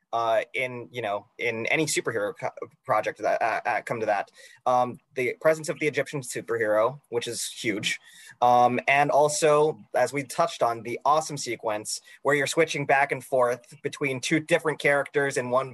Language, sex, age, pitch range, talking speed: English, male, 30-49, 130-175 Hz, 170 wpm